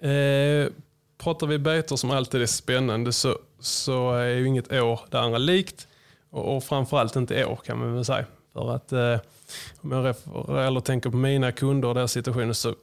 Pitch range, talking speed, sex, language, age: 120-140 Hz, 195 wpm, male, Swedish, 20-39